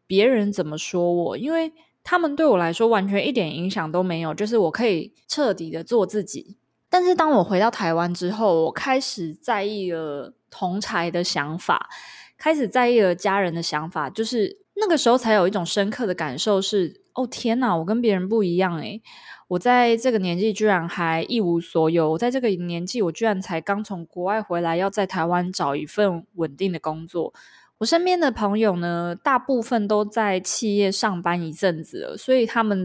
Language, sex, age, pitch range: Chinese, female, 20-39, 170-225 Hz